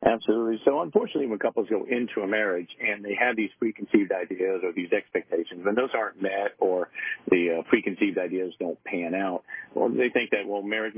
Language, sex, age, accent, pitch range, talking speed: English, male, 50-69, American, 95-135 Hz, 195 wpm